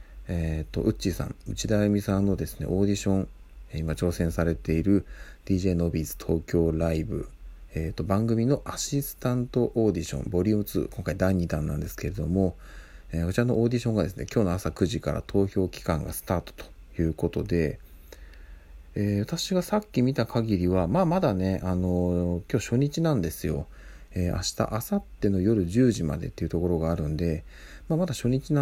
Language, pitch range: Japanese, 80-115 Hz